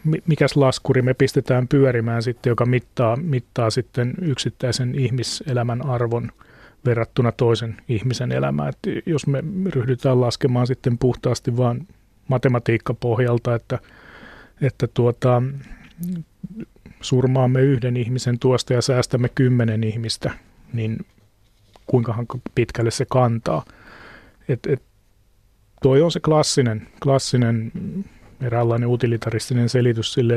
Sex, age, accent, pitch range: male, 30-49, native, 115-130 Hz